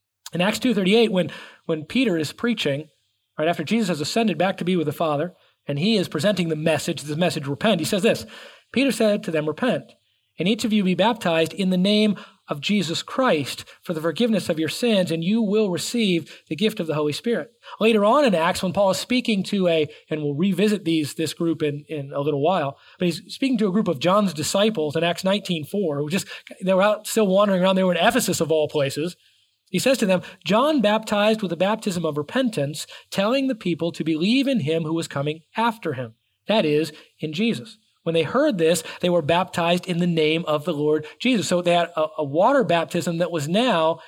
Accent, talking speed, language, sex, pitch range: American, 220 wpm, English, male, 160-210 Hz